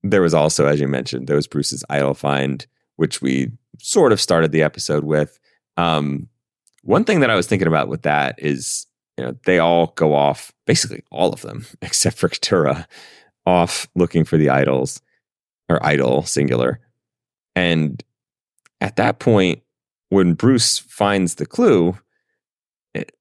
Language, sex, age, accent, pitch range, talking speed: English, male, 30-49, American, 75-120 Hz, 155 wpm